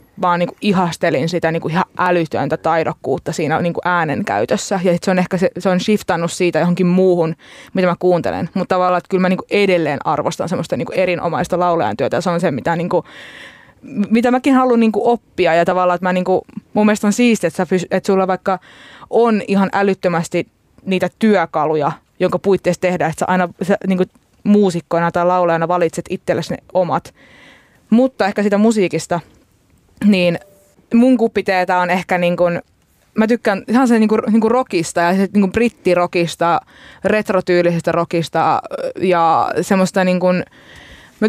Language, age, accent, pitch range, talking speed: Finnish, 20-39, native, 170-200 Hz, 155 wpm